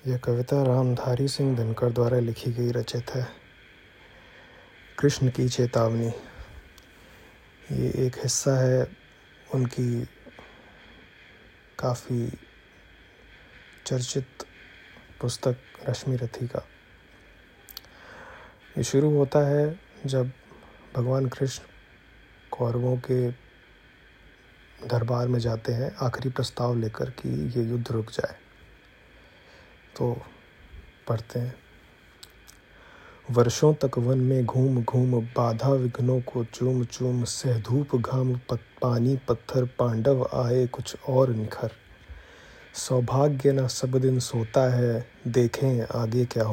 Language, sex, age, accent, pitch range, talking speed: Hindi, male, 30-49, native, 120-130 Hz, 100 wpm